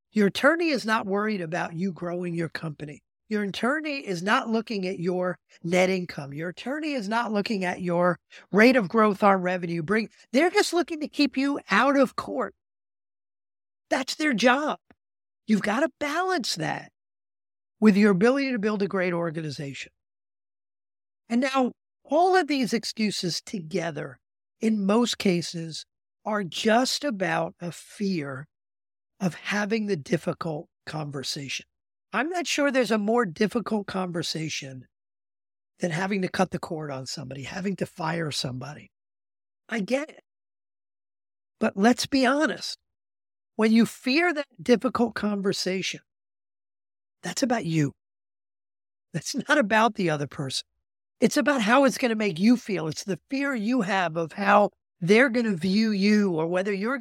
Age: 50-69